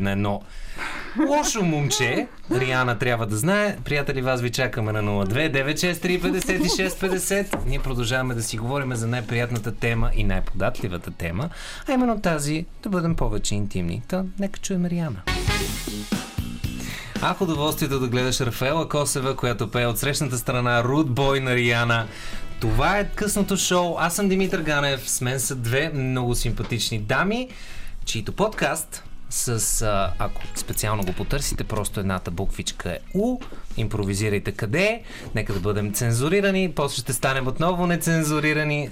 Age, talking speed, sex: 20-39, 140 wpm, male